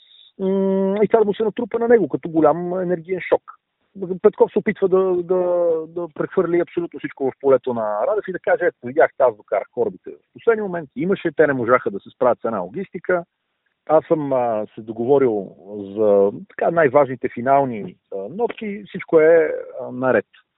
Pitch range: 130-190 Hz